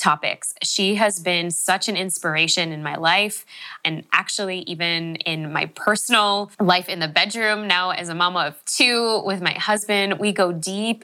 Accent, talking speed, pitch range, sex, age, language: American, 175 wpm, 160-205 Hz, female, 10-29, English